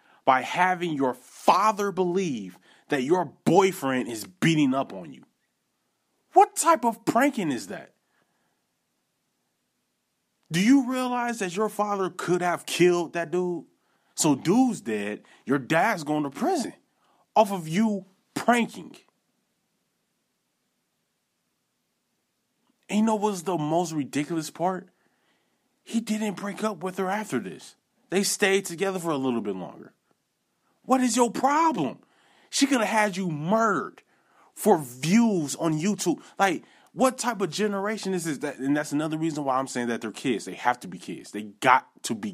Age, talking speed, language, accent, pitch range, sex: 30-49, 150 wpm, English, American, 145-215 Hz, male